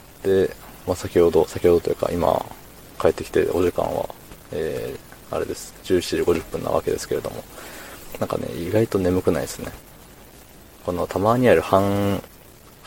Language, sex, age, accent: Japanese, male, 20-39, native